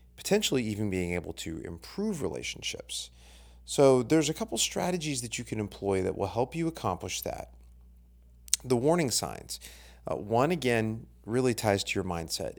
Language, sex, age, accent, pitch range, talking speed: English, male, 30-49, American, 85-120 Hz, 155 wpm